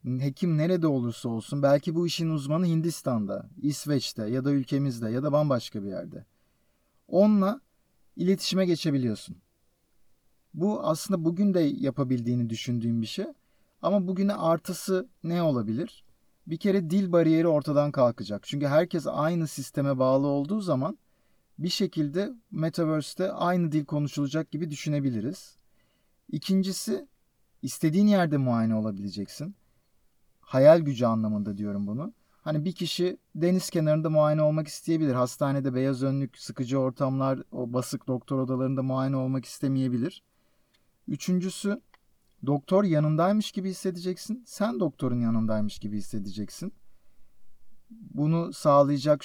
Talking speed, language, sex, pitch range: 120 wpm, Turkish, male, 125-170 Hz